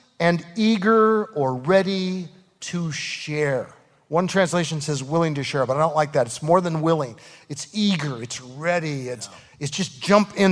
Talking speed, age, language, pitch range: 170 wpm, 40-59, English, 160-215 Hz